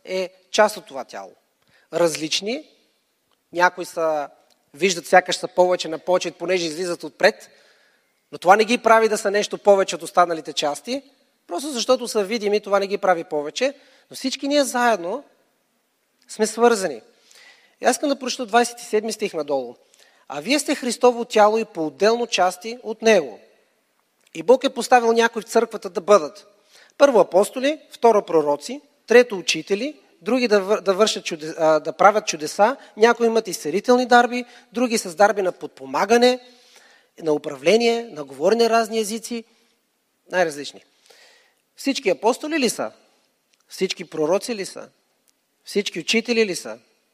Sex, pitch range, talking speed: male, 180-235 Hz, 145 wpm